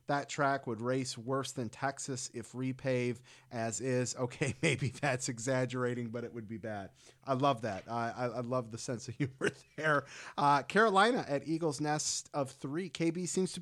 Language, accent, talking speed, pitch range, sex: English, American, 180 wpm, 125-165 Hz, male